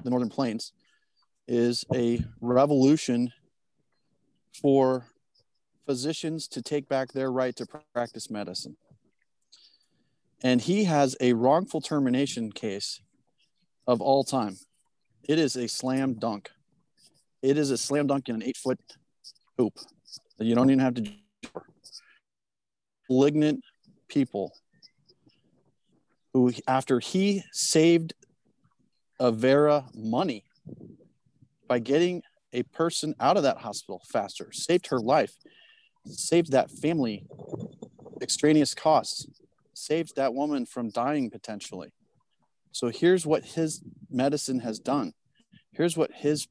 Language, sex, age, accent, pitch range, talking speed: English, male, 40-59, American, 125-160 Hz, 110 wpm